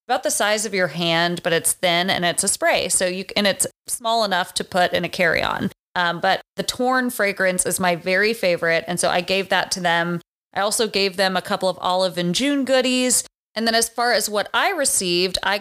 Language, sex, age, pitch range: English, female, 30-49, 180-220 Hz